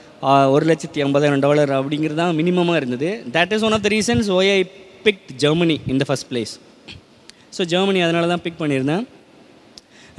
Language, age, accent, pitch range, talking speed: Tamil, 20-39, native, 145-195 Hz, 165 wpm